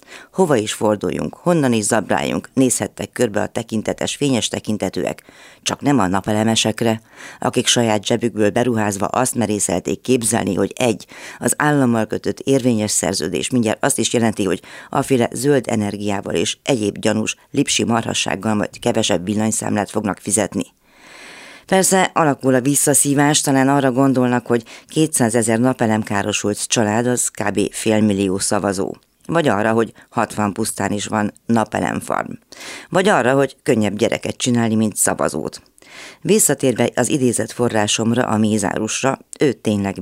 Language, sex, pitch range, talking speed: Hungarian, female, 105-125 Hz, 135 wpm